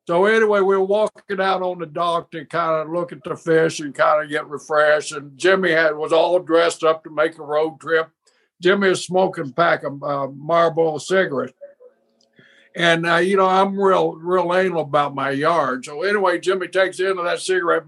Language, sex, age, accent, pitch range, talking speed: English, male, 60-79, American, 155-190 Hz, 210 wpm